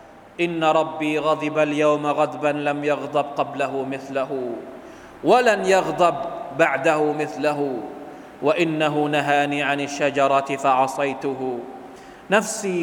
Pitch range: 145-215 Hz